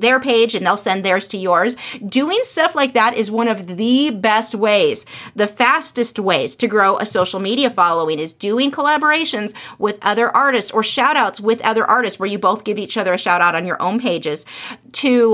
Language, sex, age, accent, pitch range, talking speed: English, female, 30-49, American, 205-270 Hz, 205 wpm